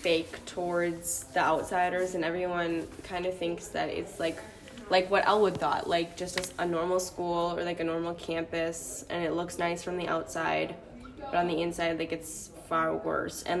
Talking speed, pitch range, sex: 190 wpm, 165-185 Hz, female